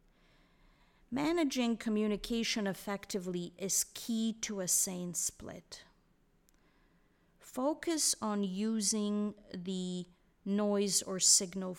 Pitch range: 185-220 Hz